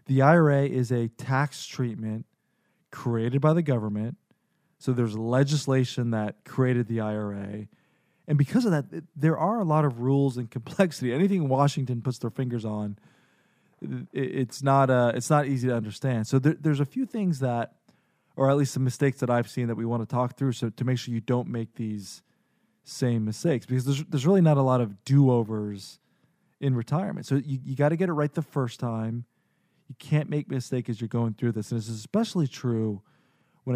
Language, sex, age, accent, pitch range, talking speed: English, male, 20-39, American, 115-150 Hz, 195 wpm